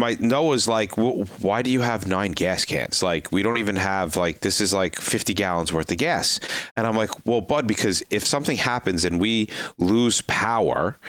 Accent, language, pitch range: American, English, 95-120 Hz